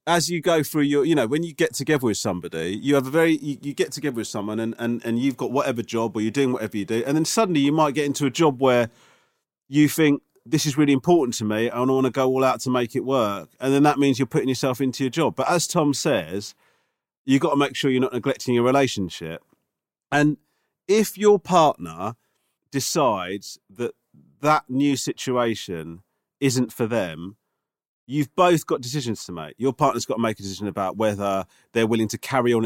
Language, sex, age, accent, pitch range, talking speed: English, male, 40-59, British, 110-140 Hz, 220 wpm